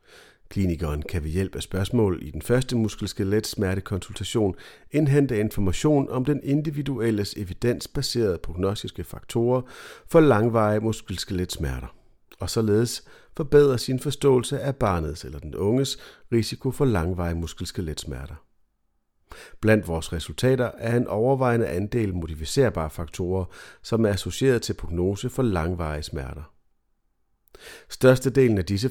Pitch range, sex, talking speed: 90-125 Hz, male, 120 wpm